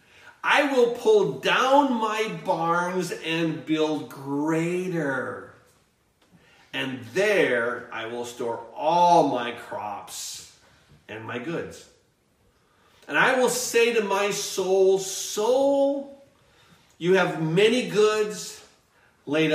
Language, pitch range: English, 150-210 Hz